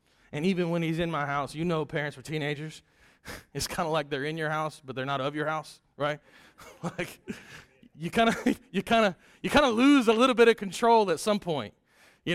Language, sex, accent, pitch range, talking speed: English, male, American, 125-175 Hz, 210 wpm